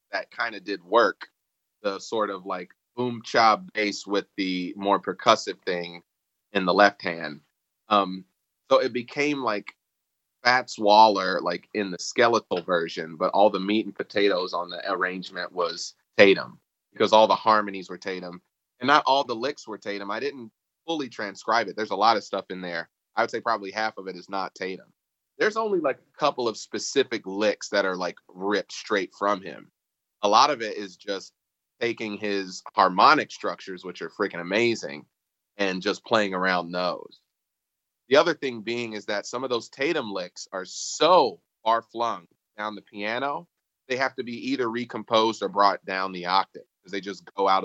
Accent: American